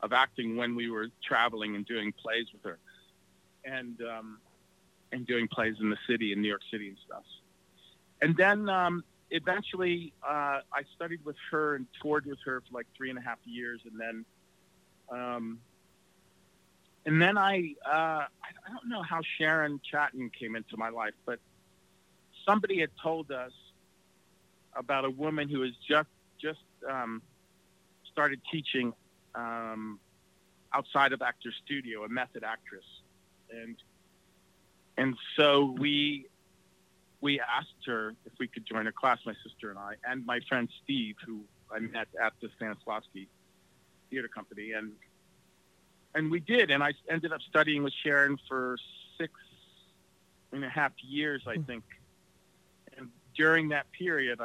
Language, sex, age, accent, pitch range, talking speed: English, male, 40-59, American, 115-150 Hz, 150 wpm